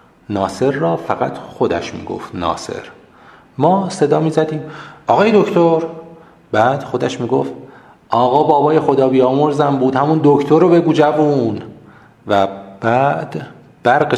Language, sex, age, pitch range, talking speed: Persian, male, 40-59, 105-140 Hz, 120 wpm